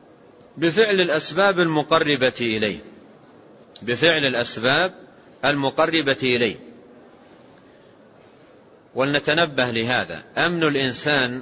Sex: male